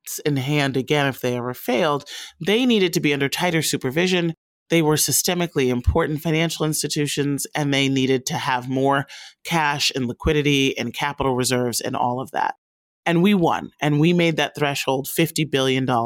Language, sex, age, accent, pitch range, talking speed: English, male, 30-49, American, 140-180 Hz, 170 wpm